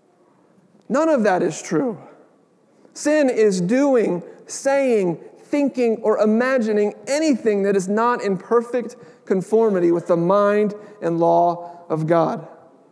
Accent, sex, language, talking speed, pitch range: American, male, English, 120 wpm, 200-245 Hz